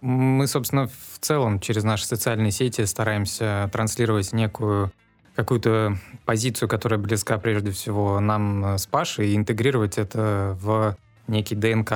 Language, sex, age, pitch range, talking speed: Russian, male, 20-39, 105-120 Hz, 130 wpm